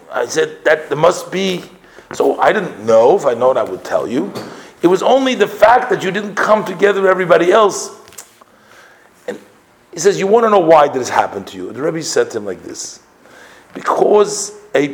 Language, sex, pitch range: English, male, 150-210 Hz